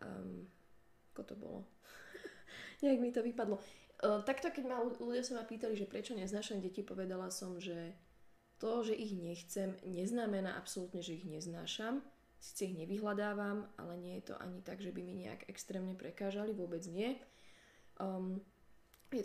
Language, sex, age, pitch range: Slovak, female, 20-39, 185-230 Hz